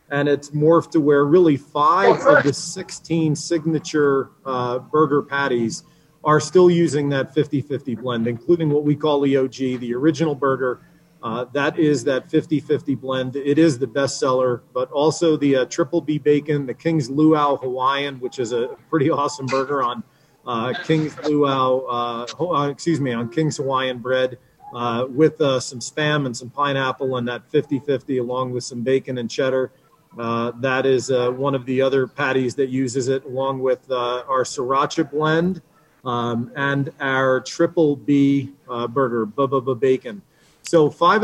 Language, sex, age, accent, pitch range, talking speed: English, male, 40-59, American, 130-155 Hz, 165 wpm